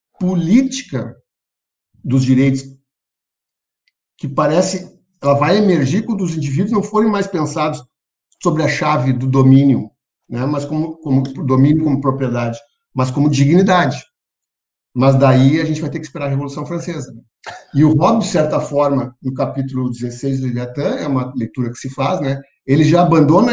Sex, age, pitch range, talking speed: male, 50-69, 130-160 Hz, 160 wpm